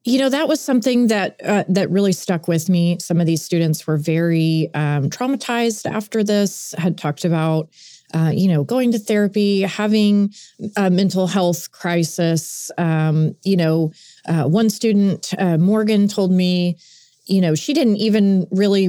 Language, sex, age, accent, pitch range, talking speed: English, female, 30-49, American, 165-205 Hz, 165 wpm